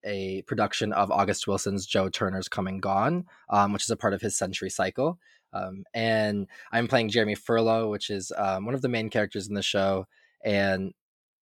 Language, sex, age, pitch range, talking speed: English, male, 20-39, 100-110 Hz, 190 wpm